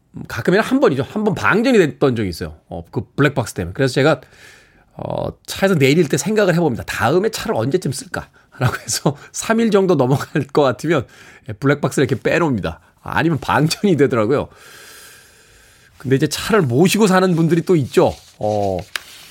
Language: Korean